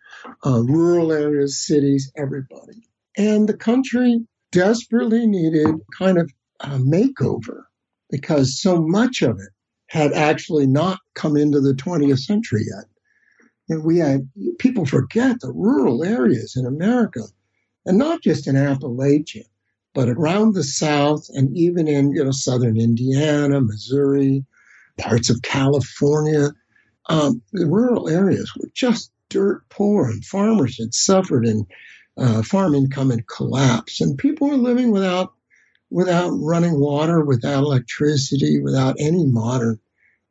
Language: English